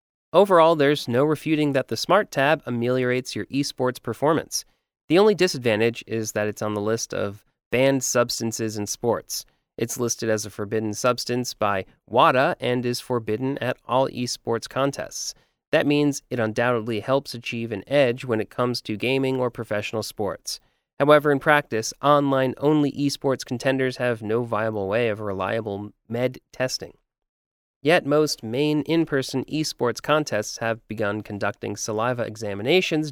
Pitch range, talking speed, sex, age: 110-140 Hz, 145 wpm, male, 30-49